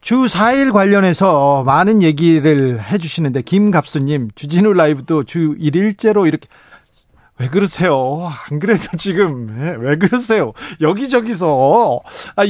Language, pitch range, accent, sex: Korean, 150-195 Hz, native, male